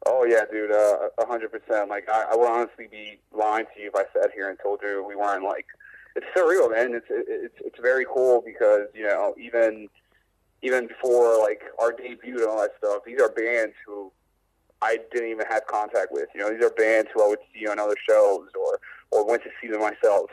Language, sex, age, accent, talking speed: English, male, 30-49, American, 225 wpm